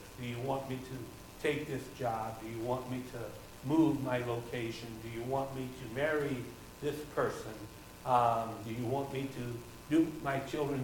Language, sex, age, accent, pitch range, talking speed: English, male, 60-79, American, 115-135 Hz, 185 wpm